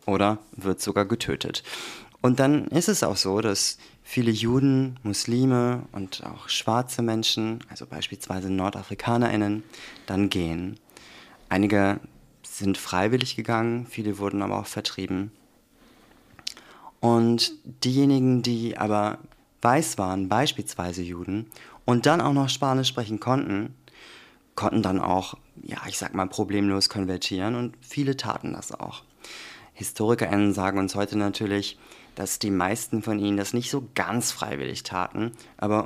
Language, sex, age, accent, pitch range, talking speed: German, male, 30-49, German, 100-120 Hz, 130 wpm